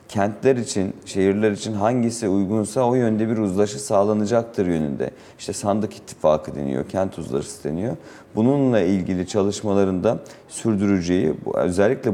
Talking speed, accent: 125 wpm, native